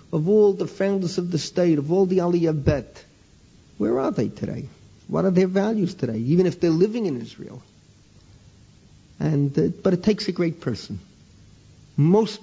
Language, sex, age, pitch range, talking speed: English, male, 50-69, 125-175 Hz, 170 wpm